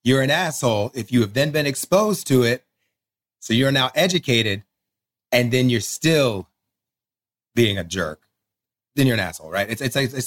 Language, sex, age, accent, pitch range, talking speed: English, male, 30-49, American, 110-140 Hz, 175 wpm